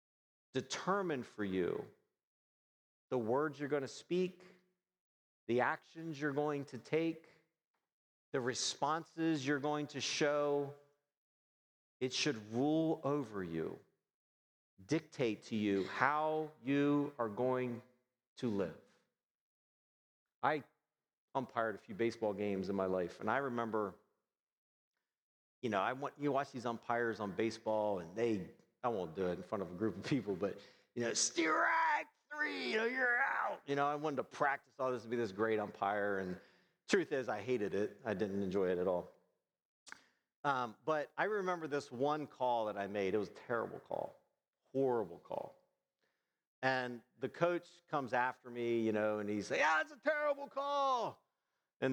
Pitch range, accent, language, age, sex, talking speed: 110-155 Hz, American, English, 40-59, male, 160 wpm